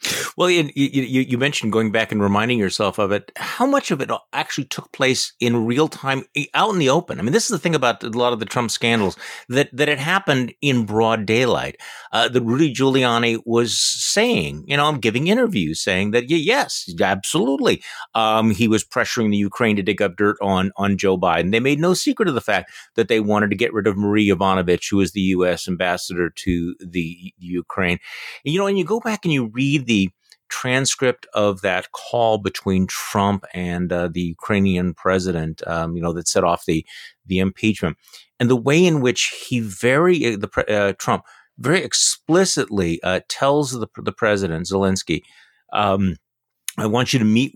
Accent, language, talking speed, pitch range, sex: American, English, 200 wpm, 95-125 Hz, male